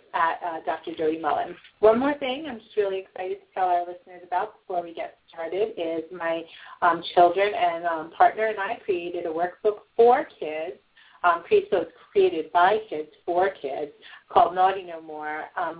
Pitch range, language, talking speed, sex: 165-230 Hz, English, 180 wpm, female